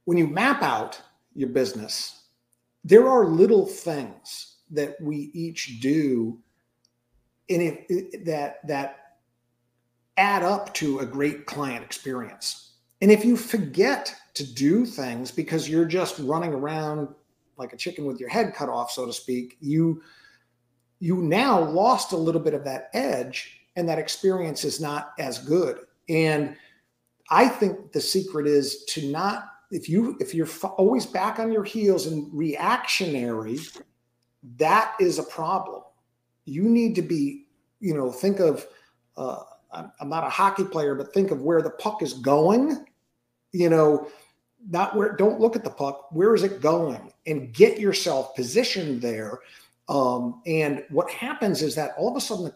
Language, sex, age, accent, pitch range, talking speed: English, male, 50-69, American, 135-195 Hz, 160 wpm